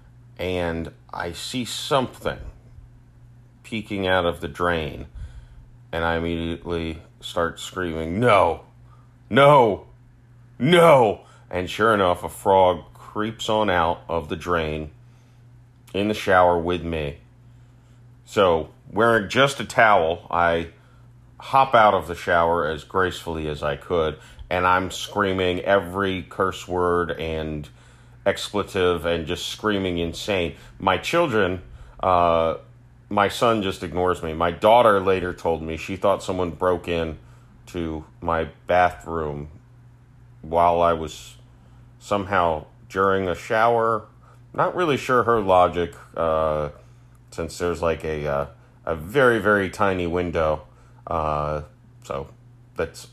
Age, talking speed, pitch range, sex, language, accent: 30-49, 120 wpm, 85-120 Hz, male, English, American